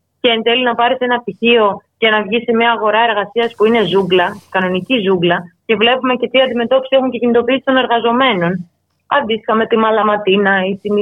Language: Greek